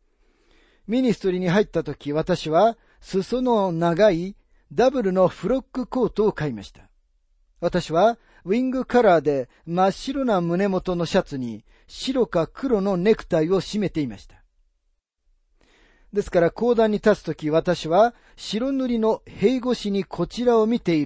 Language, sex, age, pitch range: Japanese, male, 40-59, 160-225 Hz